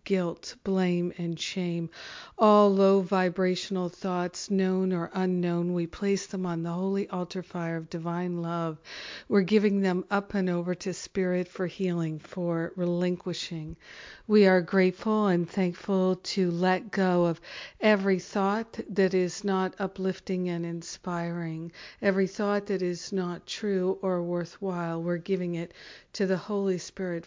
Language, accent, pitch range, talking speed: English, American, 175-195 Hz, 145 wpm